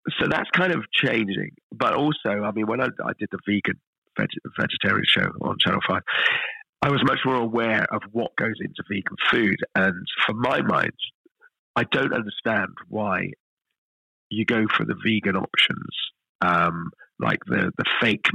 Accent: British